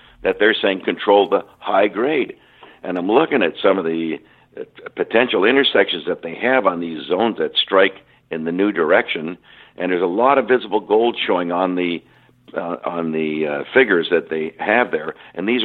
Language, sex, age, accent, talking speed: English, male, 60-79, American, 190 wpm